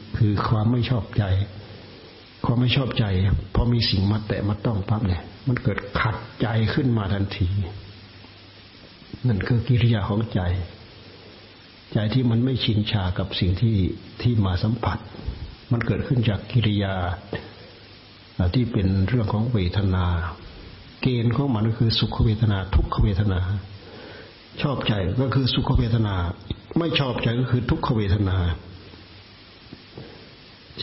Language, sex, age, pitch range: Thai, male, 60-79, 95-120 Hz